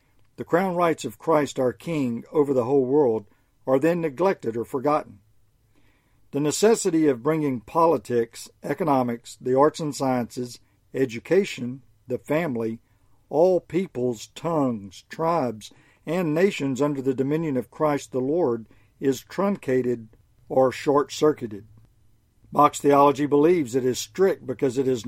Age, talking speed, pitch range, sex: 50-69, 130 wpm, 115-145 Hz, male